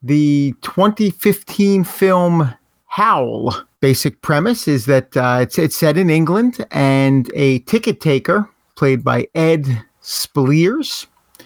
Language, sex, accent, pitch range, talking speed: English, male, American, 130-170 Hz, 115 wpm